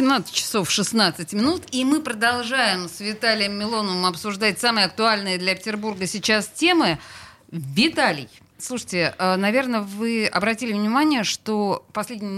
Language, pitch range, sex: Russian, 185-240 Hz, female